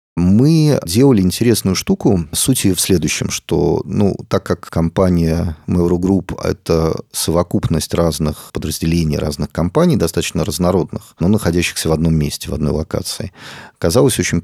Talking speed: 135 wpm